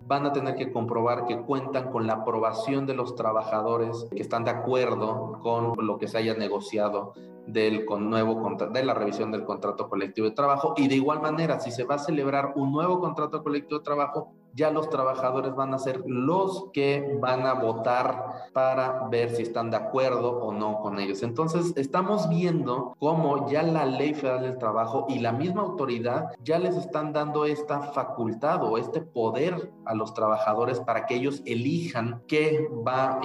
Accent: Mexican